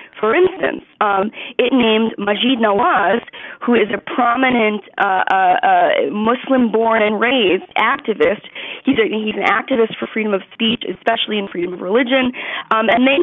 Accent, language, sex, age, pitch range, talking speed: American, English, female, 30-49, 200-255 Hz, 150 wpm